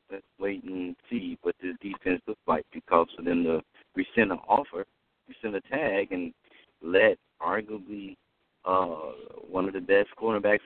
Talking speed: 160 wpm